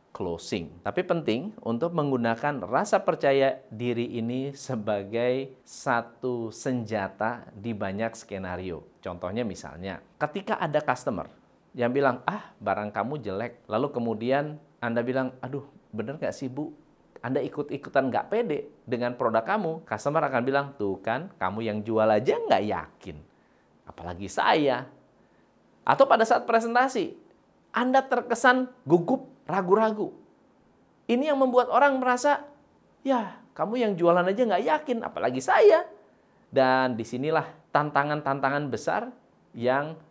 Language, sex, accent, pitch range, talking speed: Indonesian, male, native, 115-195 Hz, 120 wpm